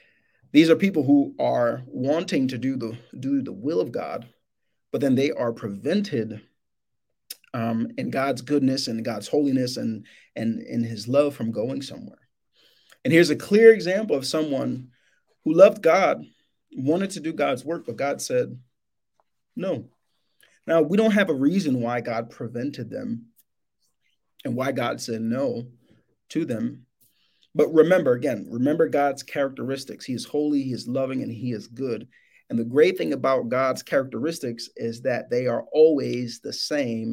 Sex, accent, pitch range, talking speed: male, American, 115-155 Hz, 165 wpm